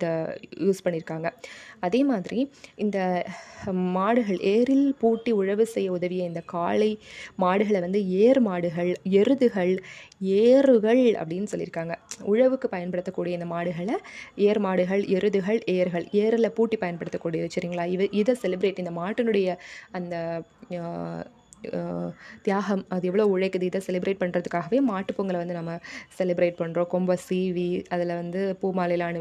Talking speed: 110 wpm